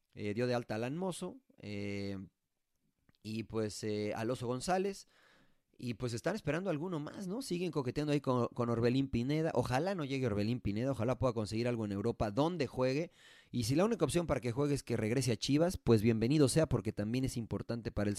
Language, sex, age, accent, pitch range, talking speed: Spanish, male, 30-49, Mexican, 115-150 Hz, 210 wpm